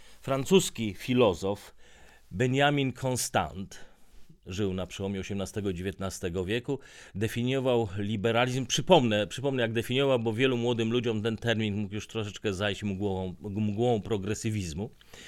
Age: 40-59